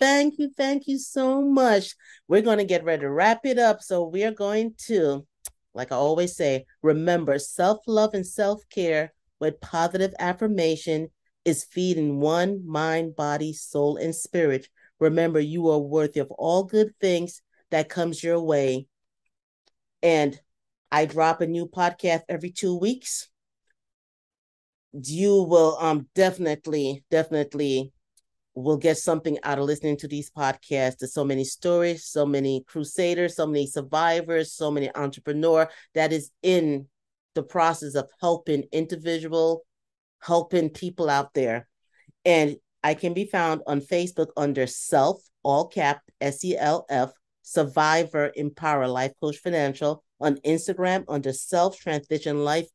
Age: 40-59